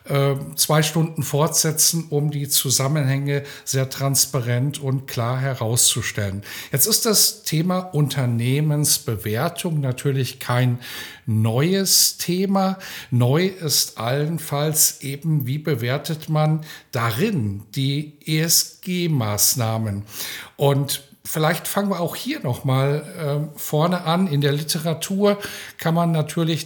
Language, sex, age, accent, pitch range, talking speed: German, male, 10-29, German, 140-175 Hz, 100 wpm